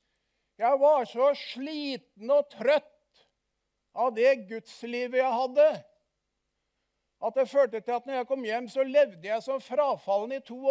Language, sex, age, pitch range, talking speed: English, male, 60-79, 160-260 Hz, 150 wpm